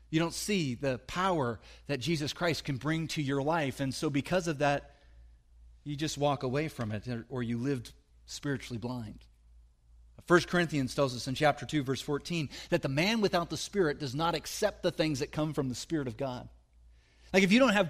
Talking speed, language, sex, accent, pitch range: 205 wpm, English, male, American, 120-175 Hz